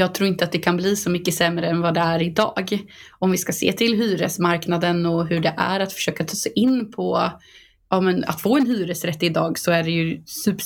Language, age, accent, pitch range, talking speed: Swedish, 20-39, native, 170-200 Hz, 240 wpm